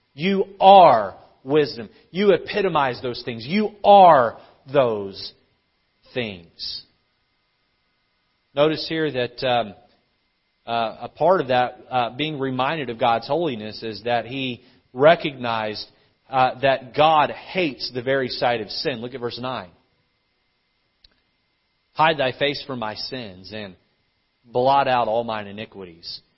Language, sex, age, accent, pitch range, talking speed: English, male, 40-59, American, 105-135 Hz, 125 wpm